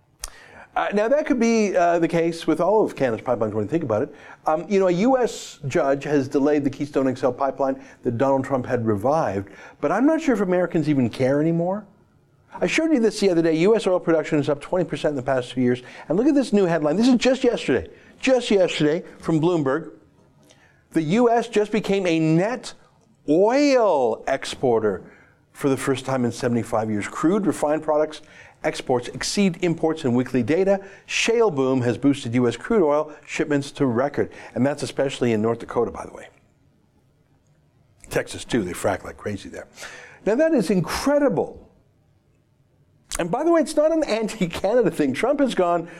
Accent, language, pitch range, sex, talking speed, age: American, English, 140-205 Hz, male, 185 wpm, 50-69